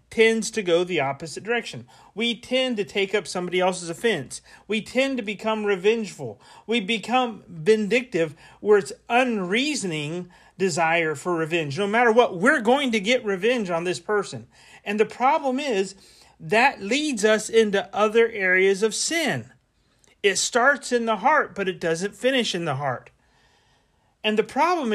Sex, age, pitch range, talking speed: male, 40-59, 180-240 Hz, 160 wpm